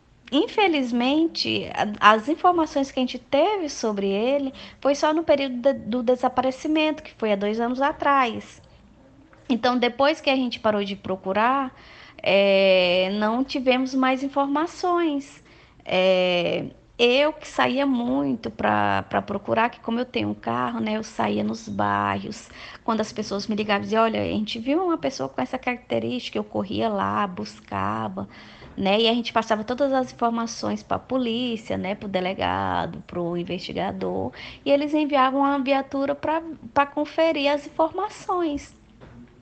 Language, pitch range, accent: Portuguese, 195-275 Hz, Brazilian